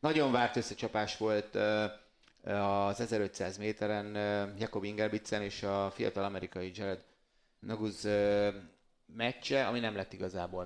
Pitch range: 95-110 Hz